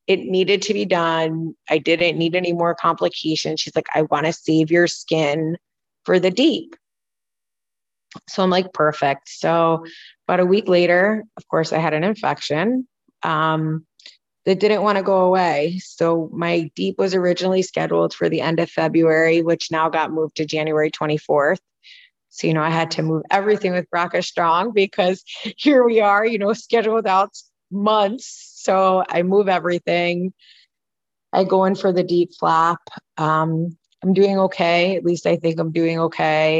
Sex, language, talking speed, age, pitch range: female, English, 170 wpm, 30-49, 160-190 Hz